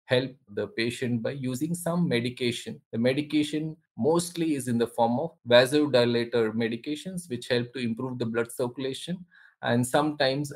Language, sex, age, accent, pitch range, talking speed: English, male, 20-39, Indian, 115-145 Hz, 150 wpm